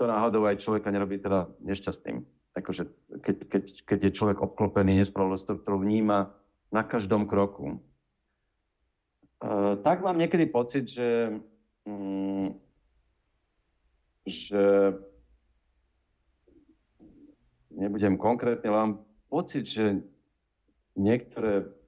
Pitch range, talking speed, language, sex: 95-105 Hz, 95 wpm, Slovak, male